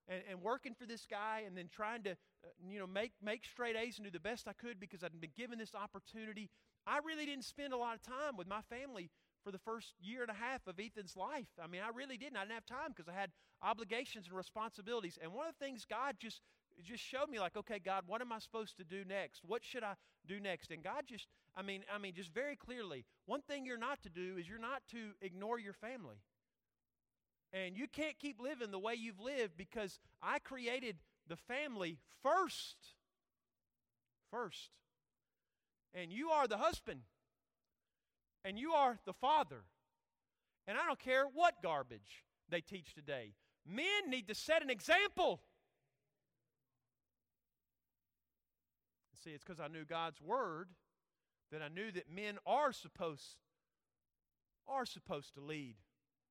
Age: 40-59